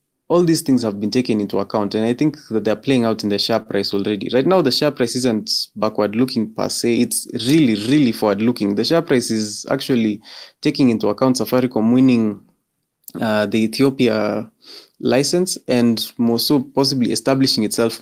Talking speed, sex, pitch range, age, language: 185 wpm, male, 110-135 Hz, 20-39, English